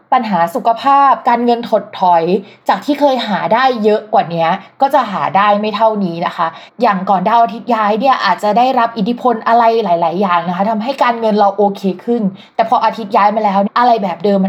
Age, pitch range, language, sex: 20-39, 185-235 Hz, Thai, female